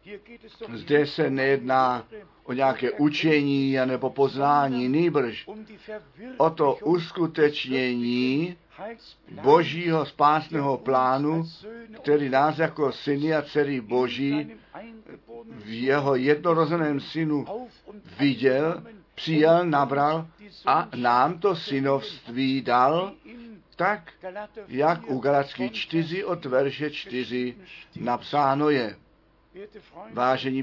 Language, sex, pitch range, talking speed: Czech, male, 135-170 Hz, 90 wpm